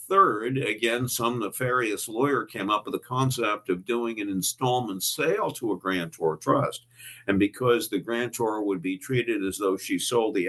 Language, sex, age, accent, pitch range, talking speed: English, male, 50-69, American, 95-125 Hz, 175 wpm